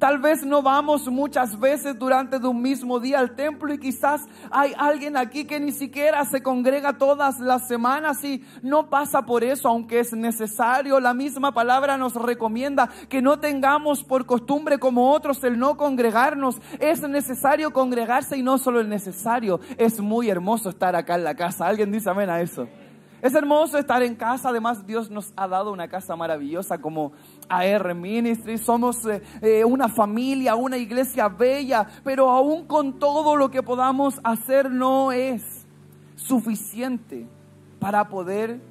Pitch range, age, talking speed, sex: 220-275 Hz, 30-49, 165 wpm, male